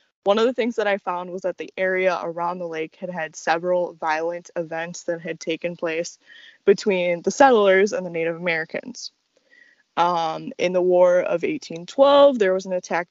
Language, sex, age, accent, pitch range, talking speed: English, female, 20-39, American, 175-210 Hz, 185 wpm